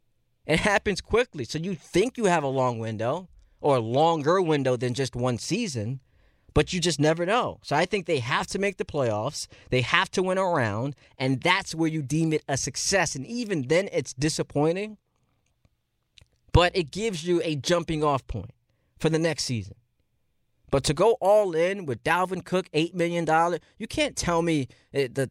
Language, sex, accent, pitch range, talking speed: English, male, American, 120-175 Hz, 185 wpm